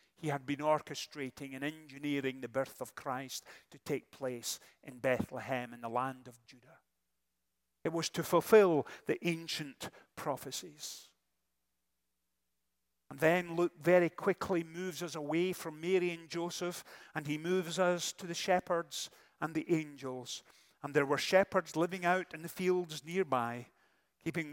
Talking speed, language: 145 wpm, English